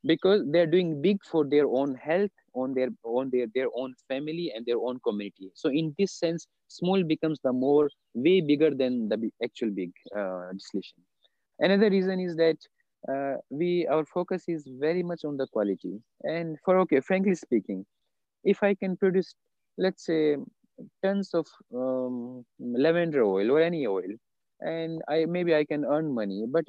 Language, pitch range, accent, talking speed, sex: English, 120-165 Hz, Indian, 170 wpm, male